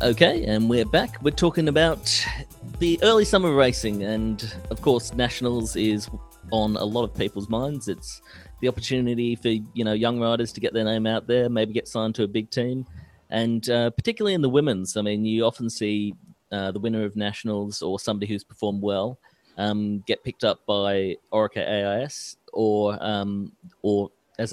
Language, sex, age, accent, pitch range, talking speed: English, male, 30-49, Australian, 100-115 Hz, 185 wpm